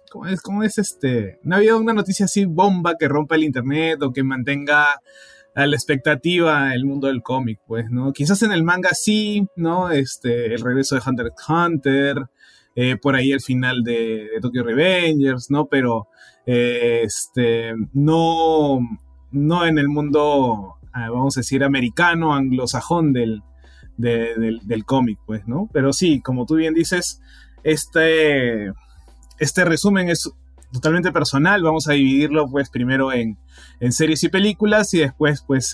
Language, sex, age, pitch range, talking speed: Spanish, male, 20-39, 120-160 Hz, 160 wpm